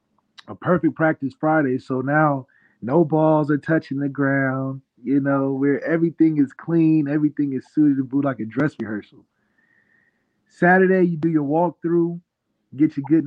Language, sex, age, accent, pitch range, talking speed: English, male, 20-39, American, 130-160 Hz, 160 wpm